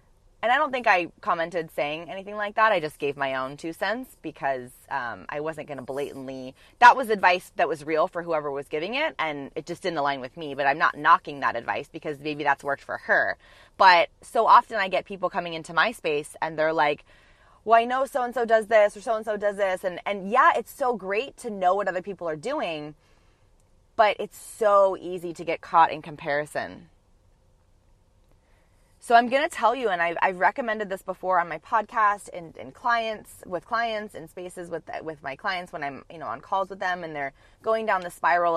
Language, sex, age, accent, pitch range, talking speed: English, female, 20-39, American, 150-200 Hz, 215 wpm